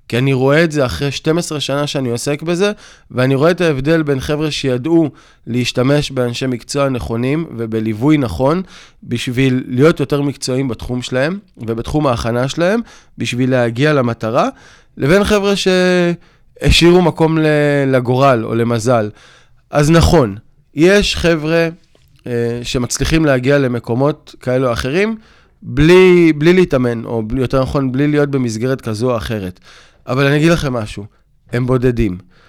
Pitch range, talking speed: 120-155 Hz, 135 wpm